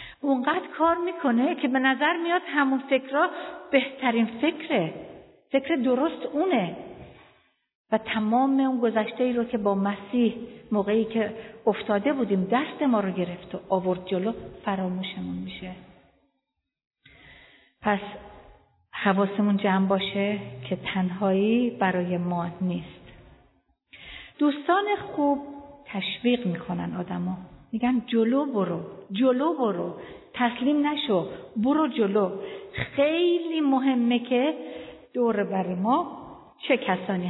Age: 50-69